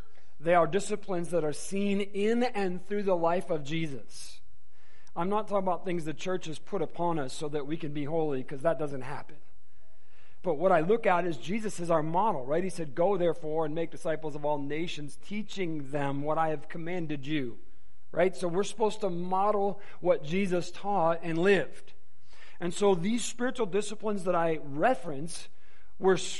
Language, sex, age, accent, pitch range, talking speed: English, male, 40-59, American, 155-205 Hz, 185 wpm